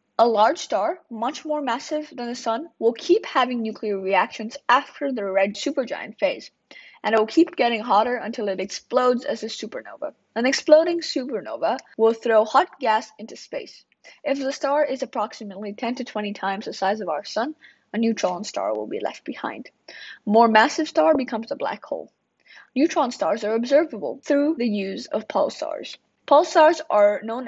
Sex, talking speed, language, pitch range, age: female, 175 wpm, English, 220-285 Hz, 10-29